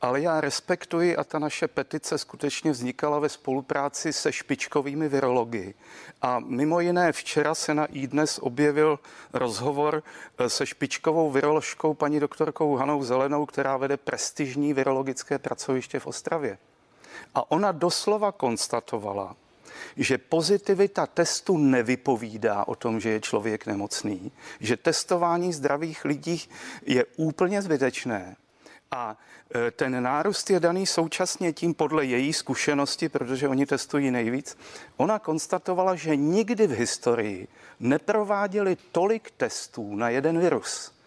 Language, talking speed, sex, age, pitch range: Czech, 125 wpm, male, 40-59, 135-170 Hz